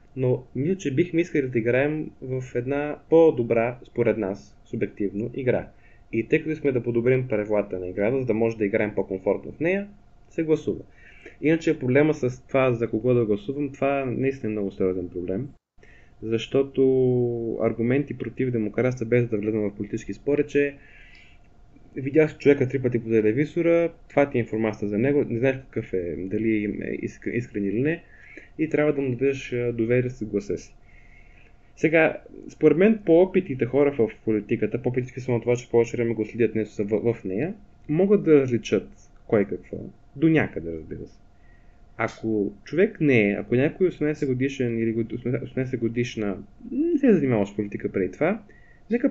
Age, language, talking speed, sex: 20-39, Bulgarian, 170 wpm, male